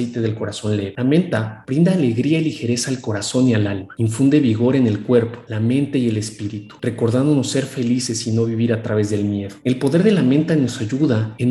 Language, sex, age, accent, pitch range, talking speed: Spanish, male, 40-59, Mexican, 110-125 Hz, 220 wpm